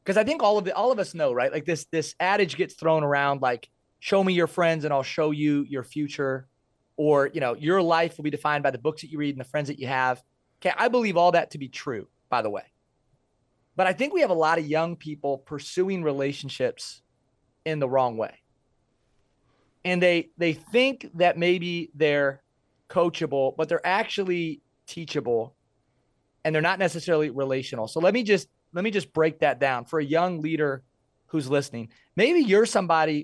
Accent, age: American, 30-49